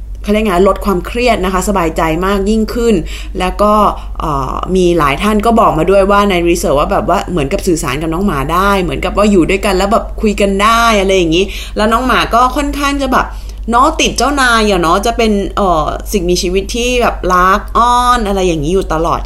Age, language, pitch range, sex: 20-39, Thai, 195-270 Hz, female